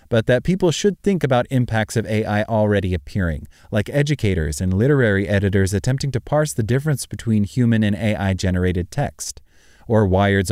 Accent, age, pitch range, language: American, 30-49, 90-125 Hz, English